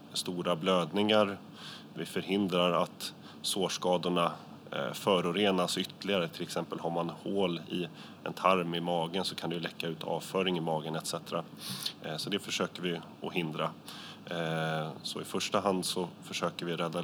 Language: Swedish